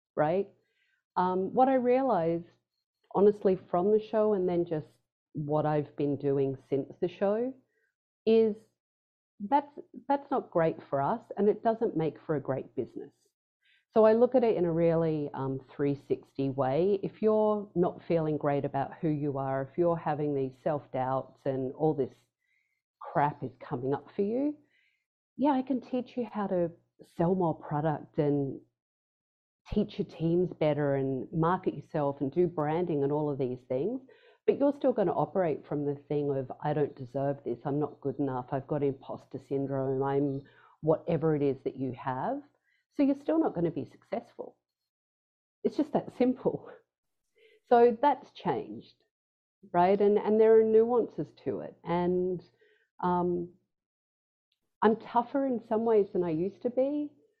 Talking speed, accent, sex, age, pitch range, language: 165 wpm, Australian, female, 40-59, 145-225 Hz, English